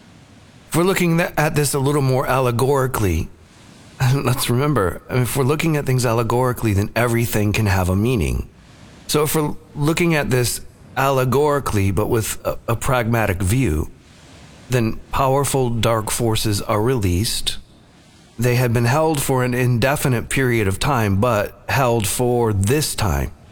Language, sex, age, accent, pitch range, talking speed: English, male, 40-59, American, 100-130 Hz, 145 wpm